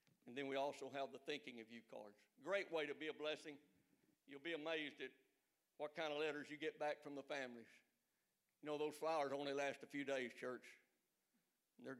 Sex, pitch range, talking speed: male, 140-165 Hz, 205 wpm